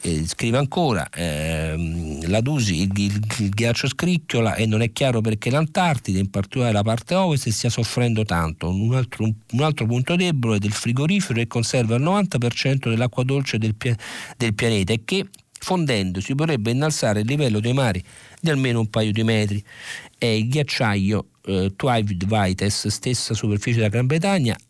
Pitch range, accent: 100-135 Hz, native